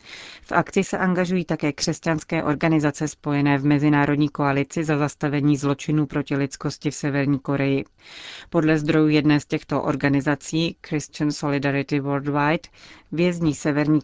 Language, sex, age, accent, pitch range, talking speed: Czech, female, 30-49, native, 145-160 Hz, 130 wpm